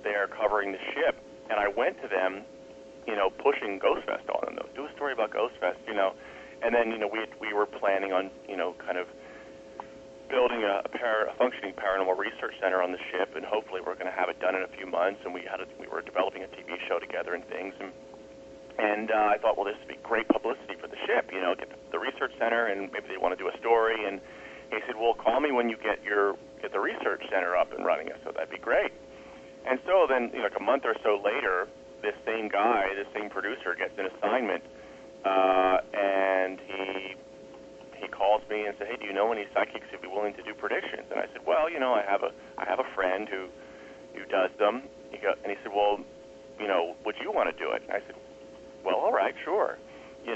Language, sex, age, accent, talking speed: English, male, 40-59, American, 240 wpm